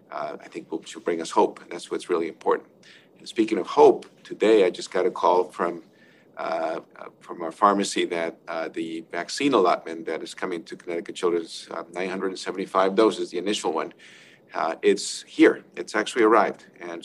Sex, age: male, 50-69